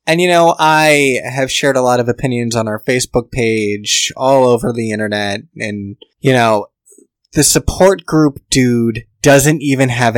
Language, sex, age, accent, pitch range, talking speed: English, male, 20-39, American, 110-135 Hz, 165 wpm